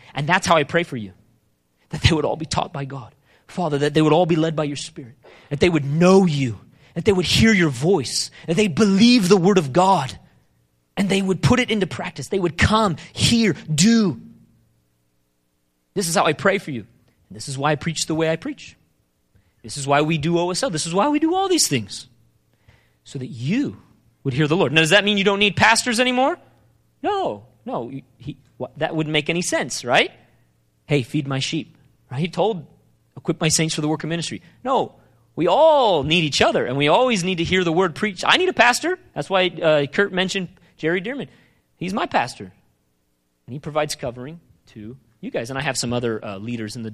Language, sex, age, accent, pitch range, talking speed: English, male, 30-49, American, 115-180 Hz, 220 wpm